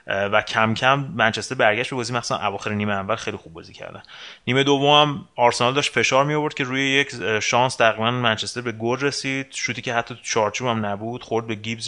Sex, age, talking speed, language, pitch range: male, 30-49, 205 wpm, Persian, 100-120 Hz